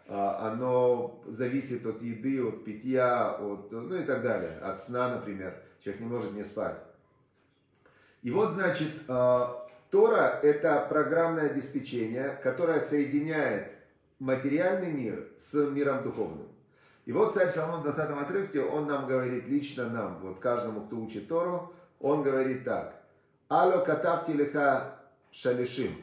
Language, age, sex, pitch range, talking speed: Russian, 40-59, male, 125-155 Hz, 130 wpm